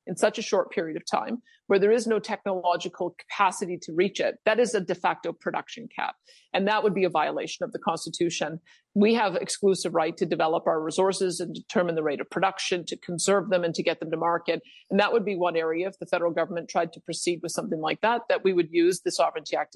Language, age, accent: English, 50-69, American